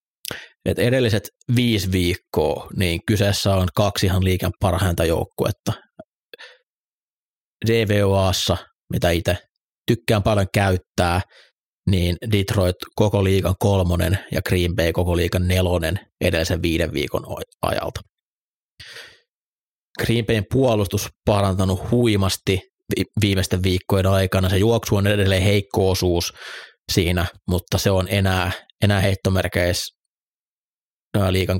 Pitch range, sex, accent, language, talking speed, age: 90-105 Hz, male, native, Finnish, 105 wpm, 30-49